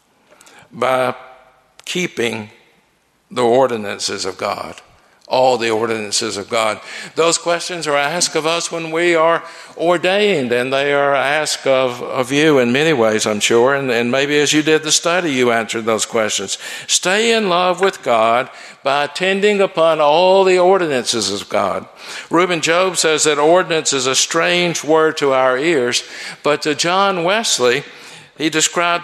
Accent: American